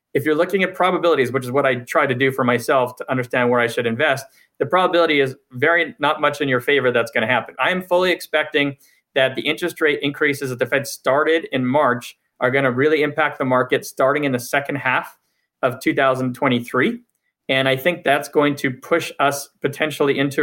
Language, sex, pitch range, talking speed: English, male, 125-150 Hz, 210 wpm